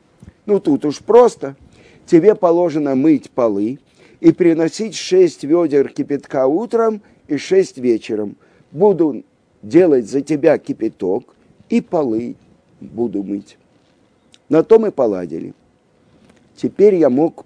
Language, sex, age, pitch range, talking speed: Russian, male, 50-69, 125-190 Hz, 115 wpm